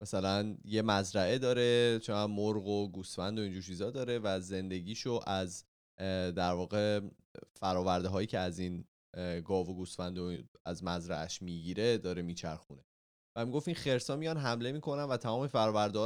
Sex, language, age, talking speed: male, Persian, 20-39, 155 wpm